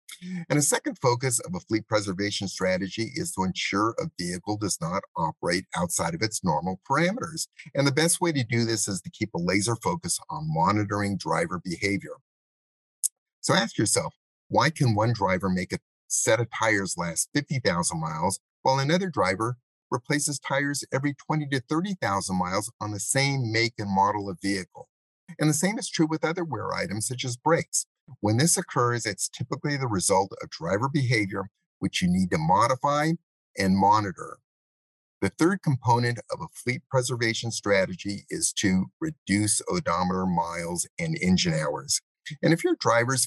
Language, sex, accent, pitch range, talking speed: English, male, American, 100-155 Hz, 170 wpm